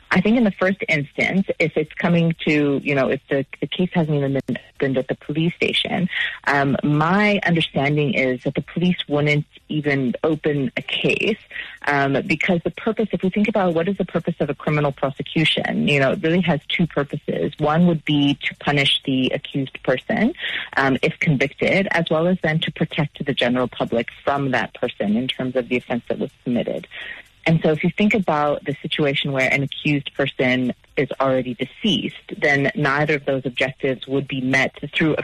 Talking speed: 195 wpm